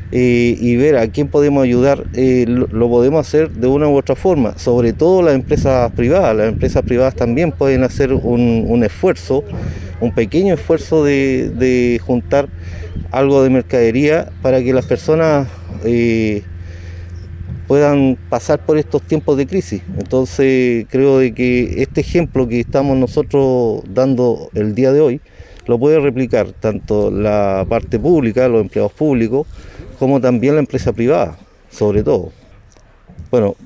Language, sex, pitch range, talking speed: Spanish, male, 105-130 Hz, 145 wpm